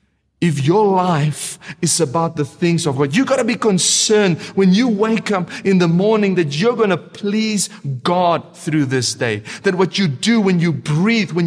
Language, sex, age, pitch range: English, male, 40-59, 160-215 Hz